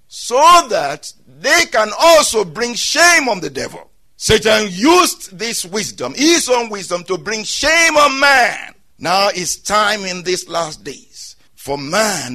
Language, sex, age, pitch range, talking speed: English, male, 60-79, 180-270 Hz, 150 wpm